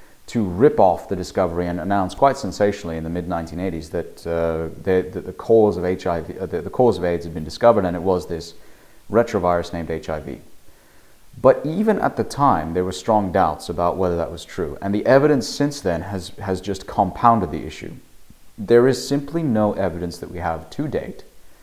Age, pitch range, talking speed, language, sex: 30-49, 85-115 Hz, 195 wpm, English, male